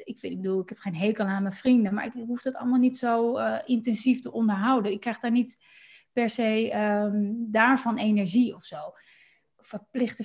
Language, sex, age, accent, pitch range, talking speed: Dutch, female, 30-49, Dutch, 225-270 Hz, 200 wpm